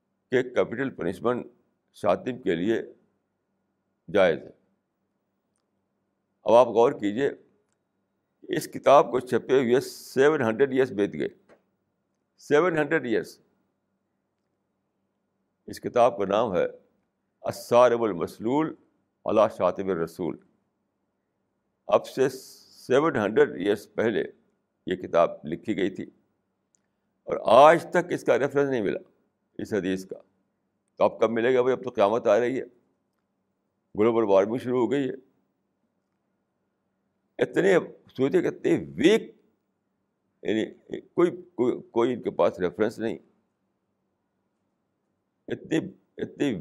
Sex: male